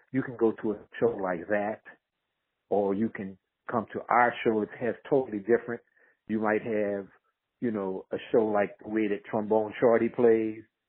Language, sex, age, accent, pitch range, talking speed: English, male, 50-69, American, 100-120 Hz, 180 wpm